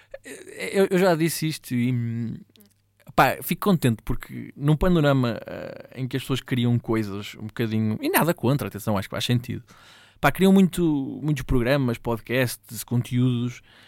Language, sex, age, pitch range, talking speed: Portuguese, male, 20-39, 115-145 Hz, 135 wpm